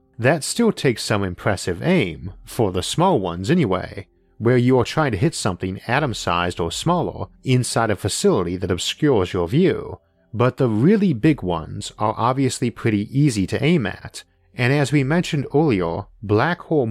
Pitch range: 95-130 Hz